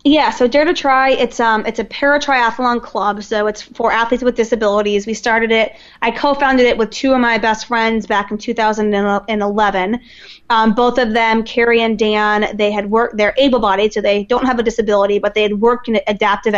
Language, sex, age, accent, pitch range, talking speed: English, female, 20-39, American, 210-235 Hz, 205 wpm